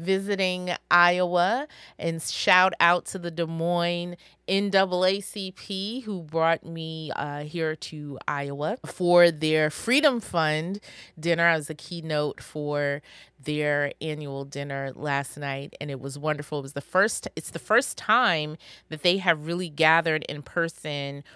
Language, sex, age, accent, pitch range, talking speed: English, female, 30-49, American, 145-170 Hz, 145 wpm